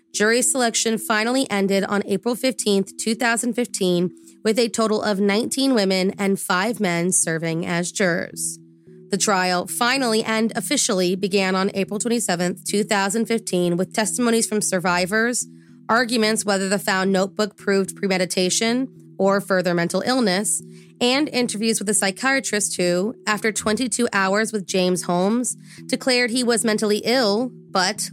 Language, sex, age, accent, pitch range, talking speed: English, female, 20-39, American, 185-235 Hz, 135 wpm